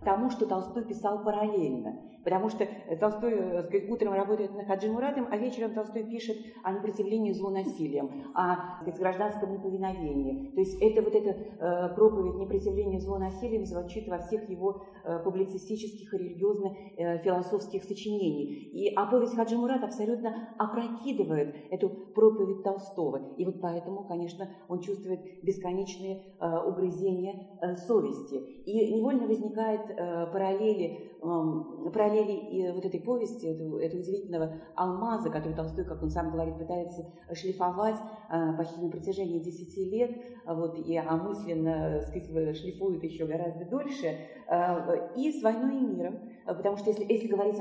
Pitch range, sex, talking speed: 175-215 Hz, female, 130 wpm